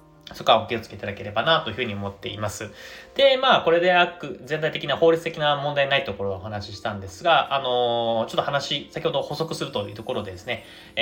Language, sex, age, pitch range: Japanese, male, 20-39, 110-165 Hz